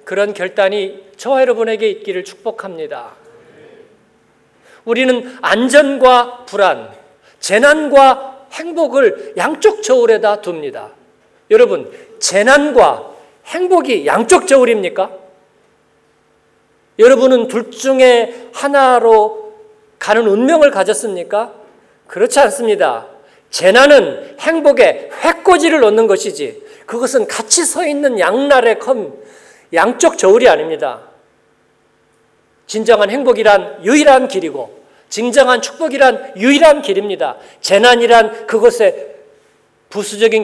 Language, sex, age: Korean, male, 50-69